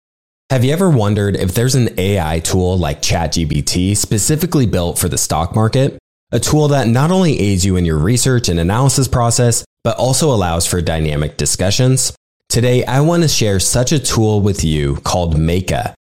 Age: 20-39